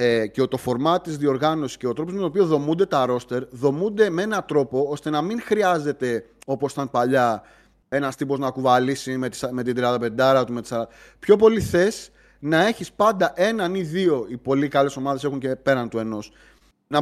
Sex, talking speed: male, 200 wpm